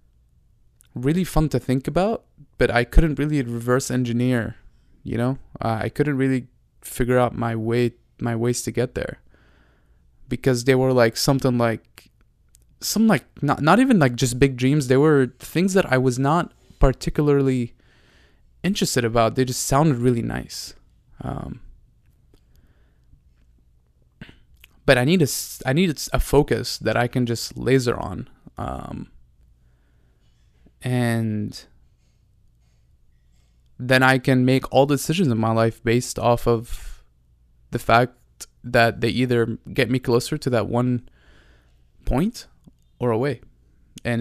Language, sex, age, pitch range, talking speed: English, male, 20-39, 85-130 Hz, 135 wpm